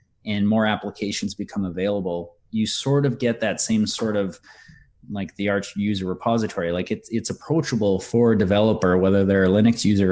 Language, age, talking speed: English, 30-49, 180 wpm